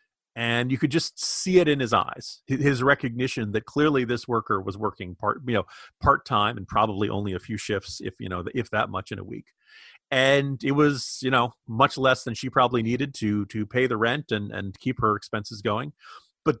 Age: 30-49